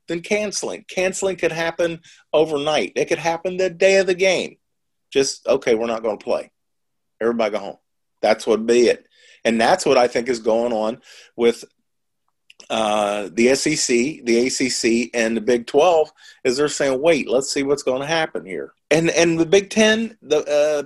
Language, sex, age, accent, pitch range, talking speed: English, male, 40-59, American, 120-190 Hz, 185 wpm